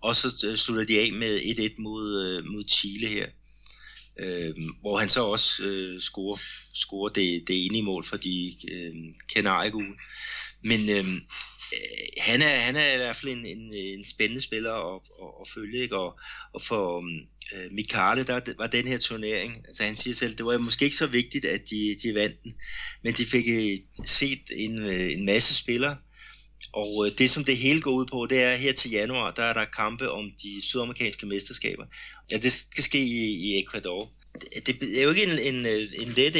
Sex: male